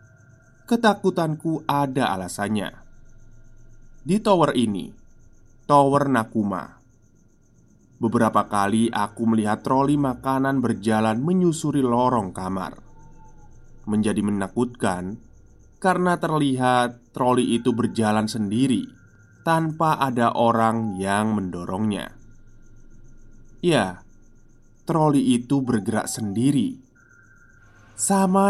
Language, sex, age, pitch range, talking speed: Indonesian, male, 20-39, 110-135 Hz, 80 wpm